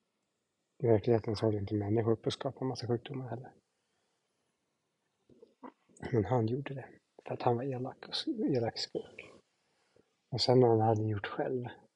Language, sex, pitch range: Swedish, male, 115-130 Hz